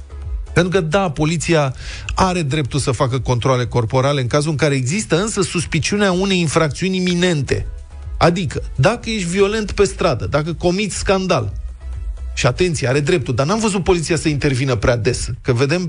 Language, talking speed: Romanian, 160 wpm